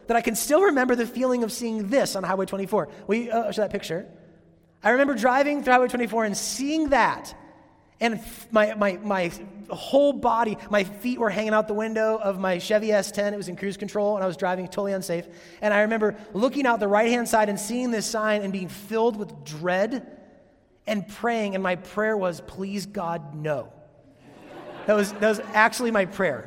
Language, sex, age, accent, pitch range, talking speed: English, male, 30-49, American, 185-230 Hz, 200 wpm